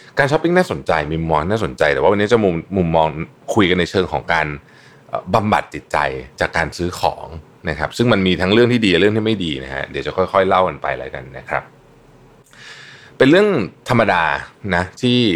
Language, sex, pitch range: Thai, male, 75-110 Hz